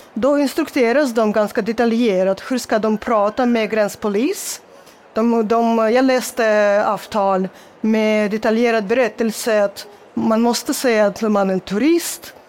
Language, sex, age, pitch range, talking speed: Swedish, female, 30-49, 210-250 Hz, 135 wpm